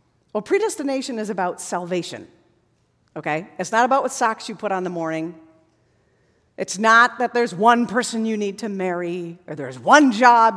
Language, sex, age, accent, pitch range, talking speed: English, female, 50-69, American, 190-270 Hz, 175 wpm